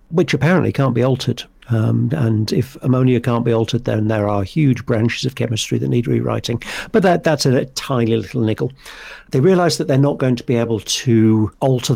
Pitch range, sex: 115-135 Hz, male